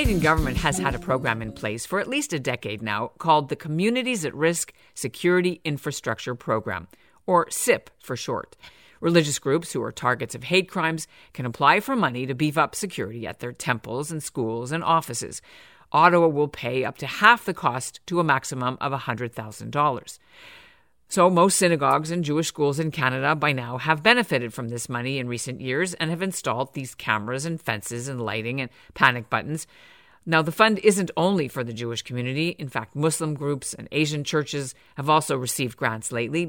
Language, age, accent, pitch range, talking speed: English, 50-69, American, 120-170 Hz, 190 wpm